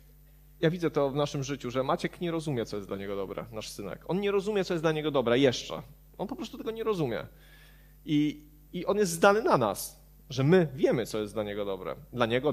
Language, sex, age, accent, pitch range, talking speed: Polish, male, 30-49, native, 130-160 Hz, 235 wpm